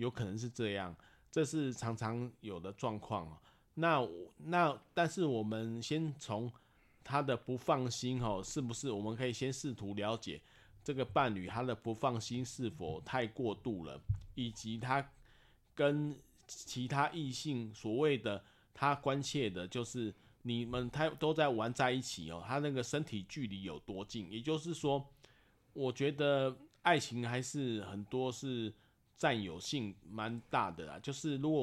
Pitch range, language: 110-140 Hz, Chinese